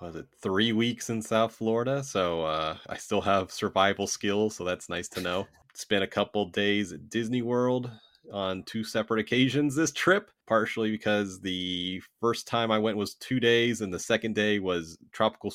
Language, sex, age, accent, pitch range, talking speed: English, male, 30-49, American, 95-120 Hz, 185 wpm